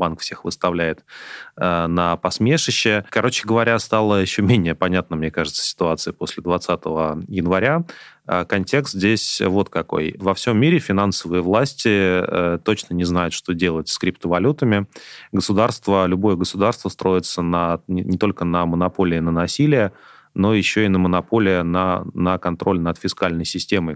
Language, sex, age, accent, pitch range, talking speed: Russian, male, 30-49, native, 85-100 Hz, 145 wpm